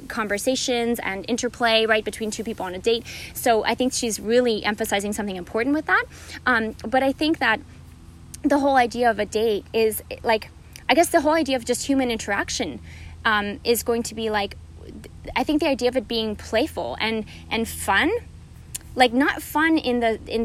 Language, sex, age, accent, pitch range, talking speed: English, female, 20-39, American, 210-255 Hz, 190 wpm